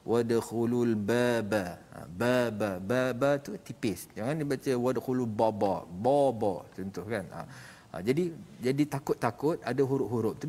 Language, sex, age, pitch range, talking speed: Malayalam, male, 50-69, 115-140 Hz, 120 wpm